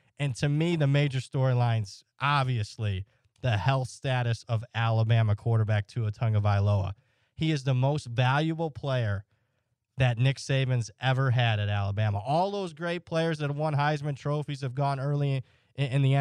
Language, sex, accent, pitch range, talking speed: English, male, American, 120-160 Hz, 160 wpm